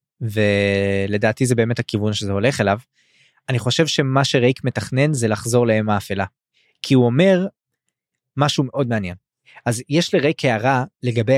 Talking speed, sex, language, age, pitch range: 140 wpm, male, Hebrew, 20-39, 115-140 Hz